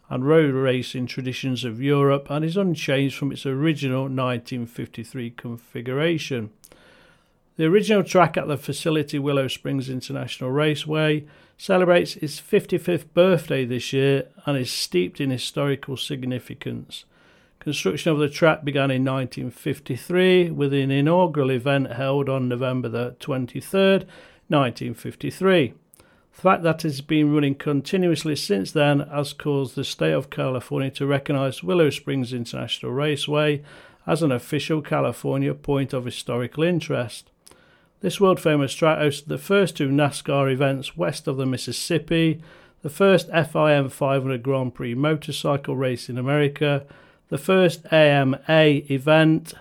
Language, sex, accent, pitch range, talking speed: English, male, British, 135-160 Hz, 130 wpm